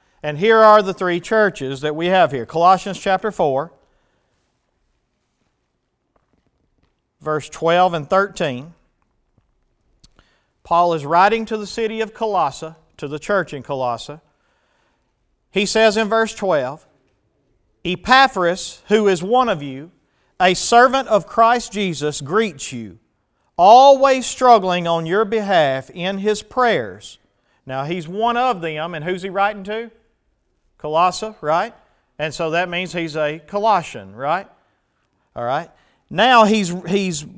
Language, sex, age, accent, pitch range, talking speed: English, male, 40-59, American, 165-230 Hz, 130 wpm